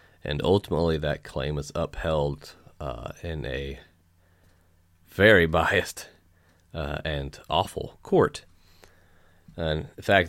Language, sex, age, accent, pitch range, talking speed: English, male, 30-49, American, 75-90 Hz, 105 wpm